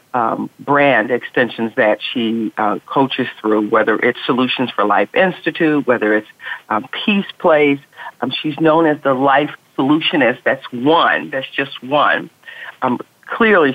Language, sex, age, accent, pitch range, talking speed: English, female, 50-69, American, 125-160 Hz, 145 wpm